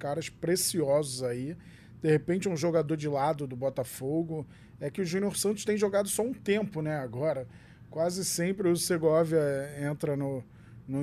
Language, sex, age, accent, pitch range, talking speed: Portuguese, male, 20-39, Brazilian, 130-160 Hz, 165 wpm